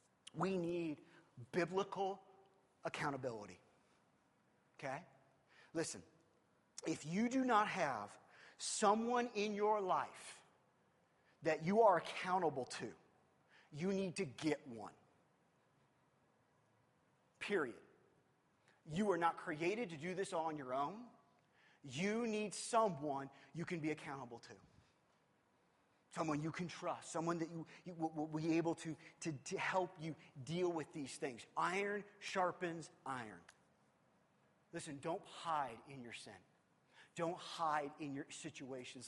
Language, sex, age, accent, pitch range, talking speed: English, male, 40-59, American, 150-185 Hz, 120 wpm